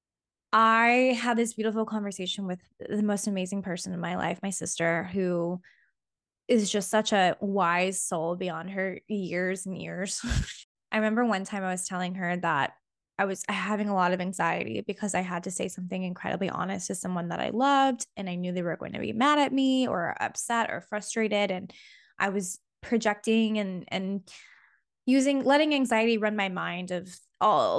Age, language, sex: 10-29, English, female